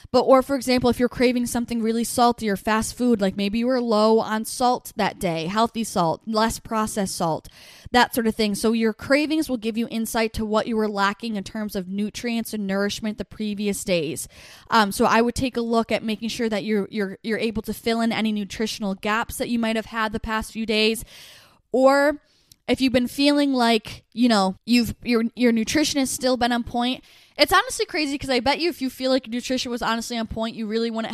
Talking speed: 225 wpm